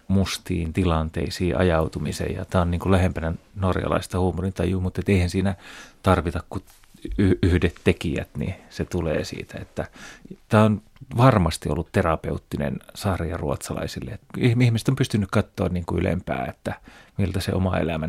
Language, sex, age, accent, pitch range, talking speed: Finnish, male, 30-49, native, 90-110 Hz, 135 wpm